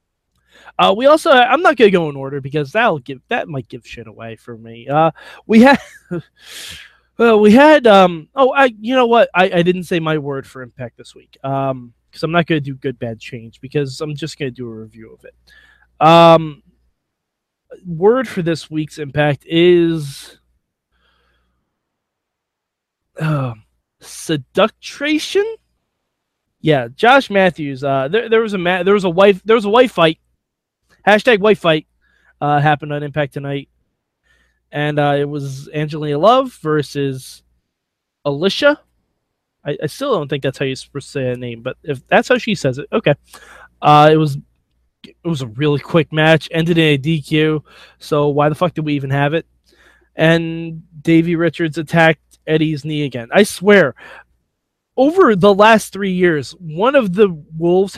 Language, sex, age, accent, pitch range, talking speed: English, male, 20-39, American, 140-195 Hz, 165 wpm